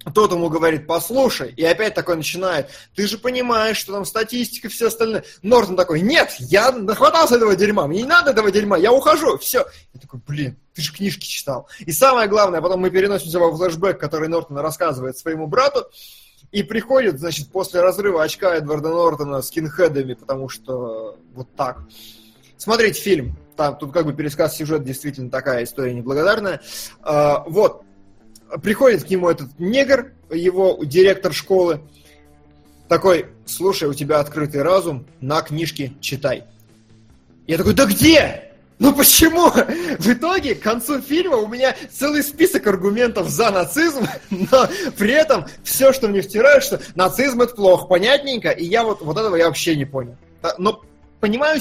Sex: male